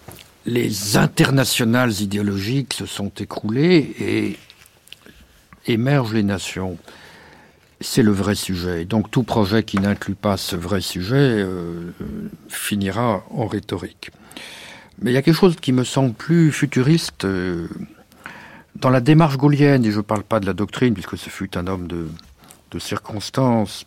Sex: male